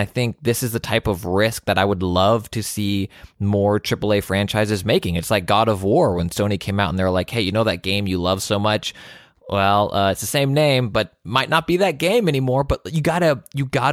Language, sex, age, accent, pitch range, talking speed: English, male, 20-39, American, 90-115 Hz, 250 wpm